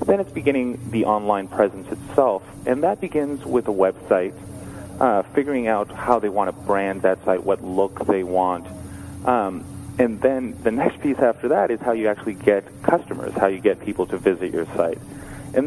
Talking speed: 195 wpm